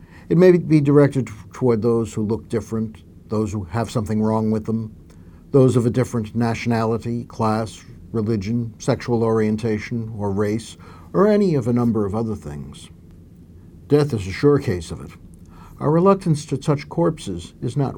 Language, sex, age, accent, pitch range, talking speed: English, male, 60-79, American, 85-130 Hz, 165 wpm